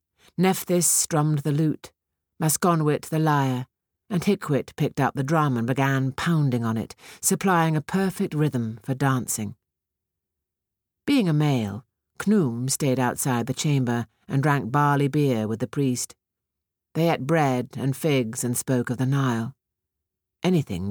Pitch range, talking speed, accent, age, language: 110-150 Hz, 145 wpm, British, 50-69, English